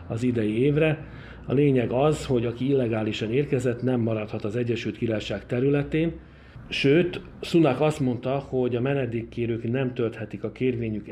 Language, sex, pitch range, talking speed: Hungarian, male, 110-130 Hz, 145 wpm